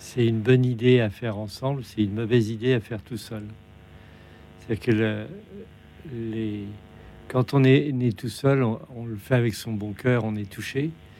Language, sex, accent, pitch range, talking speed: French, male, French, 110-125 Hz, 195 wpm